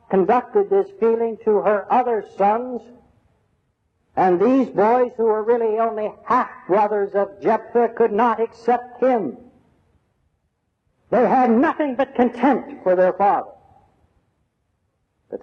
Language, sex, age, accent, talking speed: English, male, 60-79, American, 115 wpm